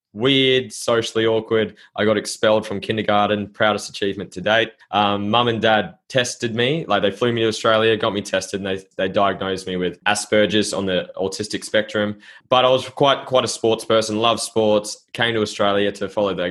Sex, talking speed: male, 195 wpm